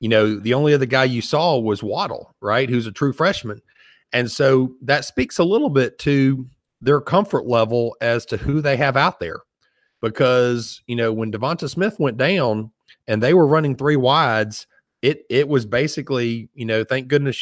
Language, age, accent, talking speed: English, 40-59, American, 190 wpm